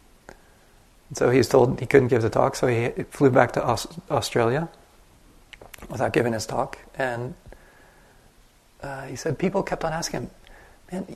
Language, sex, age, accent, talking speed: English, male, 30-49, American, 155 wpm